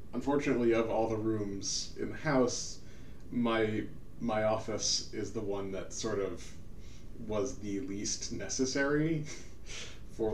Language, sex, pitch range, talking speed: English, male, 100-120 Hz, 130 wpm